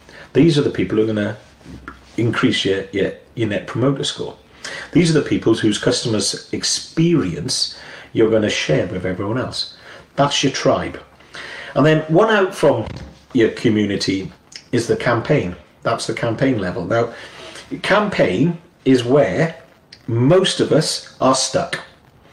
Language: English